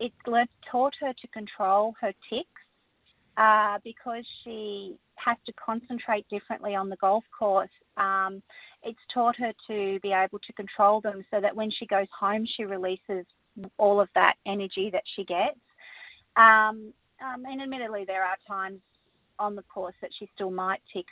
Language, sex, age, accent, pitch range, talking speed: English, female, 30-49, Australian, 195-230 Hz, 165 wpm